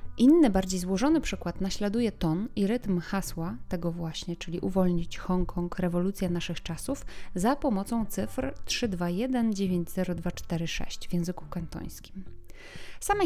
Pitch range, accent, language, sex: 175-225 Hz, native, Polish, female